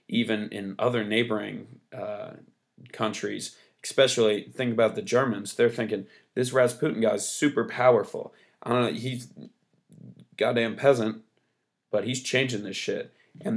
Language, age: English, 20-39